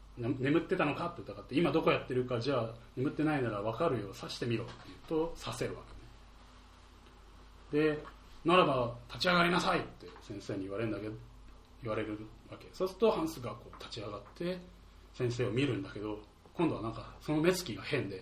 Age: 30-49